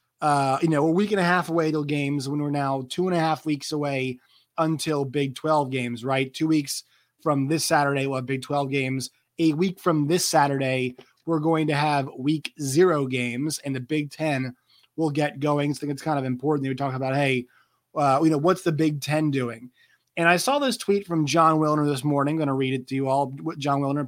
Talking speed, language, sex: 230 wpm, English, male